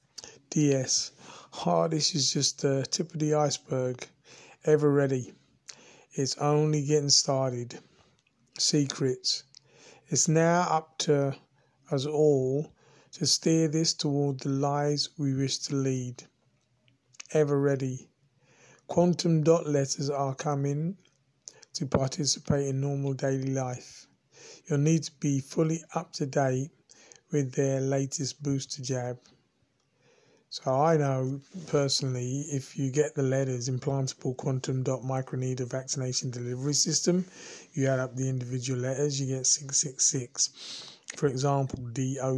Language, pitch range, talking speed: English, 130-150 Hz, 125 wpm